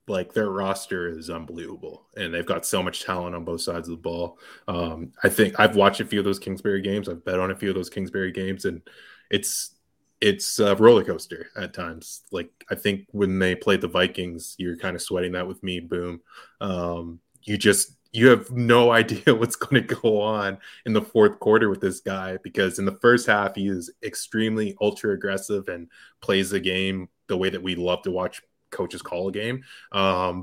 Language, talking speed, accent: English, 210 wpm, American